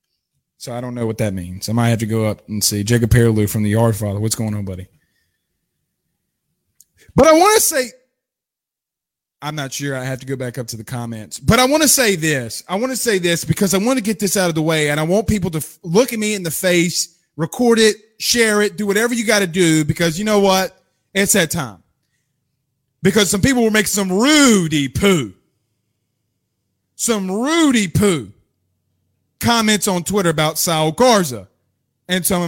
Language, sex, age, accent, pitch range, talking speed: English, male, 30-49, American, 120-195 Hz, 205 wpm